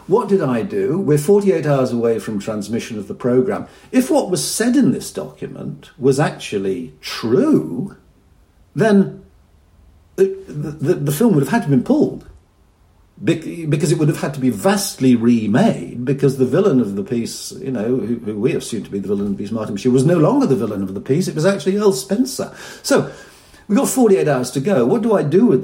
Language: English